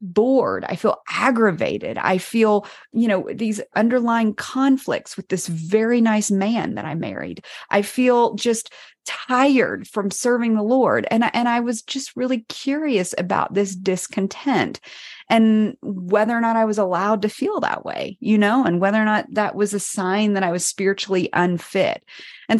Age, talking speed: 30-49, 175 wpm